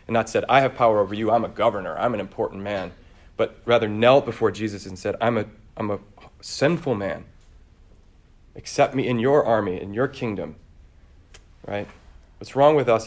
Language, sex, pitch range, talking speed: English, male, 90-120 Hz, 185 wpm